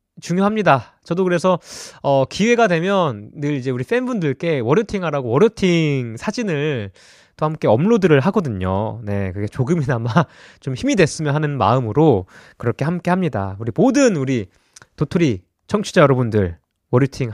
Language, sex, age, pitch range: Korean, male, 20-39, 140-230 Hz